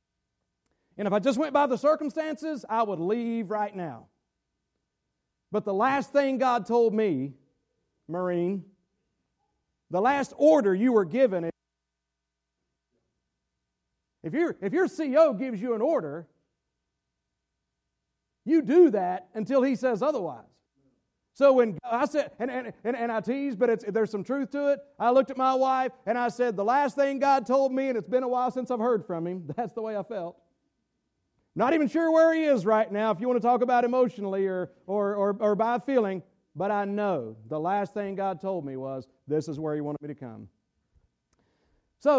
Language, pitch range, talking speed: English, 185-270 Hz, 185 wpm